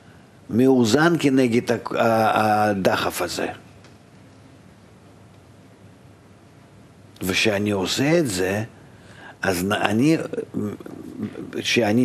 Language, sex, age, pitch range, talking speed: Hebrew, male, 50-69, 105-135 Hz, 55 wpm